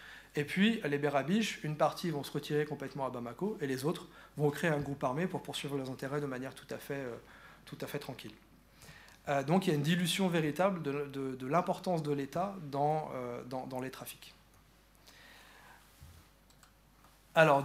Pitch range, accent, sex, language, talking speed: 140-175 Hz, French, male, French, 175 wpm